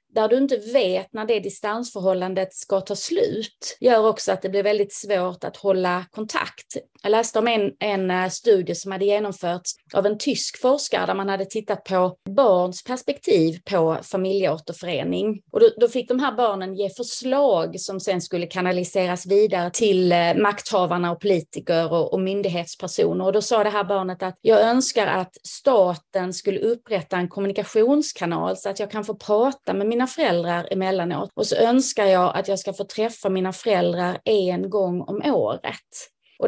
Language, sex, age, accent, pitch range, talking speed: Swedish, female, 30-49, native, 180-220 Hz, 170 wpm